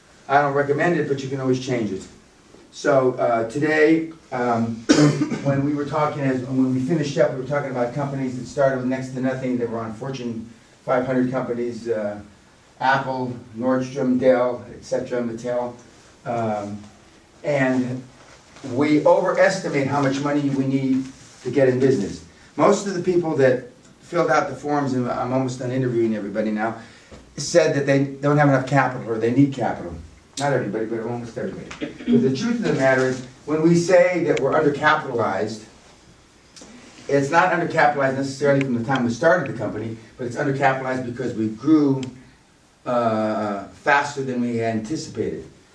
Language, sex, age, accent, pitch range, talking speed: English, male, 40-59, American, 120-145 Hz, 165 wpm